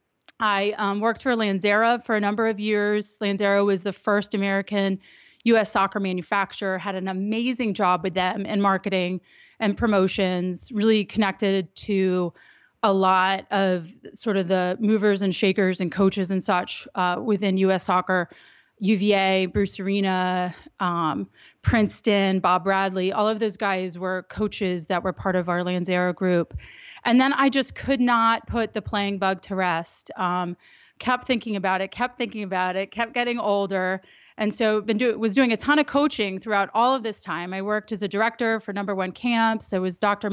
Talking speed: 175 wpm